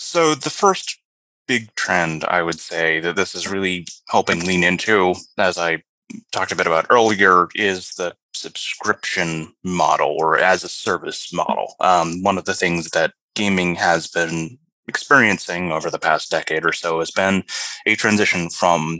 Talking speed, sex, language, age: 165 wpm, male, English, 20-39